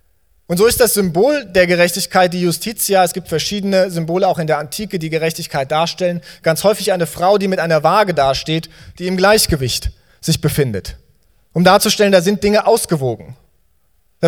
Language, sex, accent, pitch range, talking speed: German, male, German, 150-195 Hz, 170 wpm